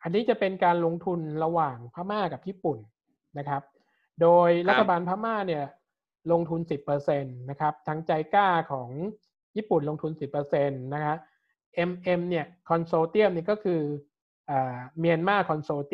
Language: Thai